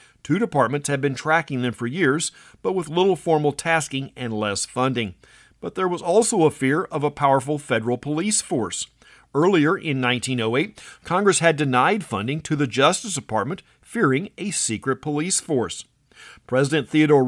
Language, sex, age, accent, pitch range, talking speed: English, male, 50-69, American, 125-160 Hz, 160 wpm